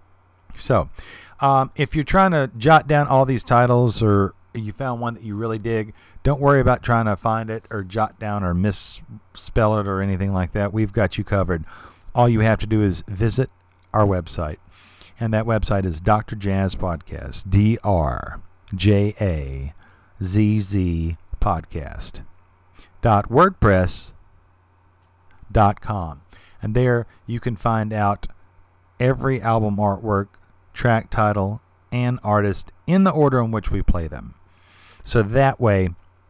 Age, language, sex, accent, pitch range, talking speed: 40-59, English, male, American, 95-120 Hz, 130 wpm